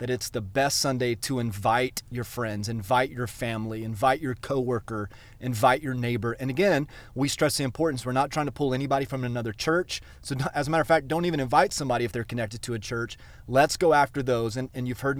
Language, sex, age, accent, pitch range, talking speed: English, male, 30-49, American, 120-140 Hz, 225 wpm